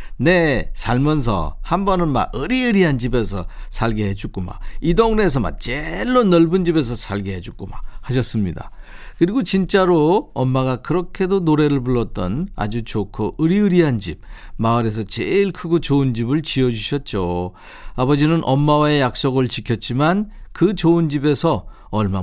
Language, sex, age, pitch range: Korean, male, 50-69, 110-160 Hz